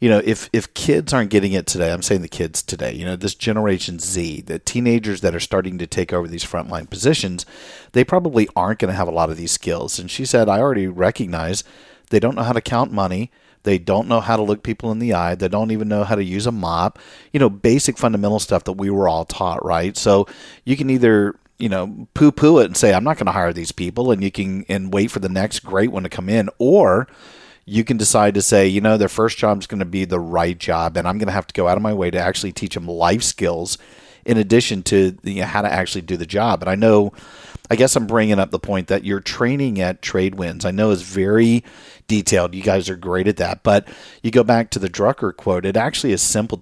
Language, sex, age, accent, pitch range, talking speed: English, male, 40-59, American, 95-115 Hz, 255 wpm